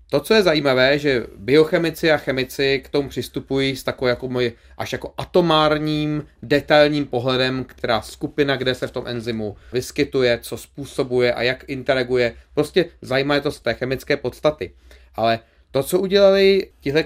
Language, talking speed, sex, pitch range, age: Czech, 160 wpm, male, 125-160 Hz, 30-49